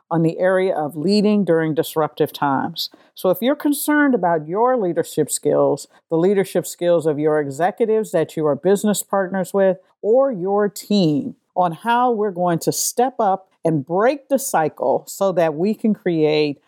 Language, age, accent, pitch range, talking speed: English, 50-69, American, 155-195 Hz, 170 wpm